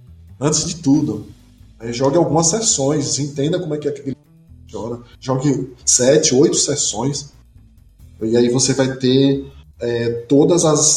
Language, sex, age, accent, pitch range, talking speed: Portuguese, male, 20-39, Brazilian, 115-160 Hz, 150 wpm